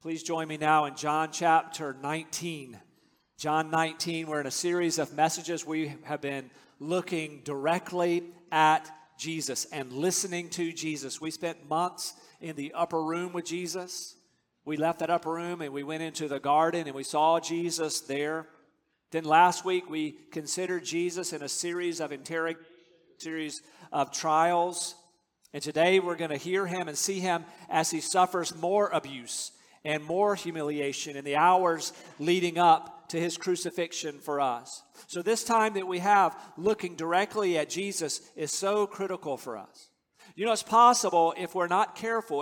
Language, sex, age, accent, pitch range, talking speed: English, male, 50-69, American, 155-180 Hz, 165 wpm